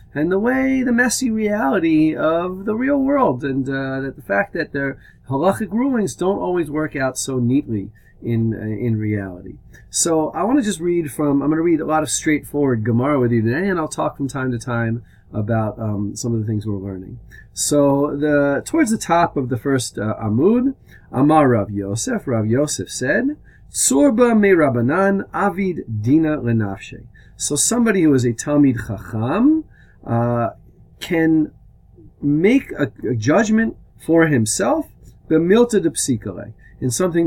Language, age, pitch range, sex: English, 40-59, 115-165 Hz, male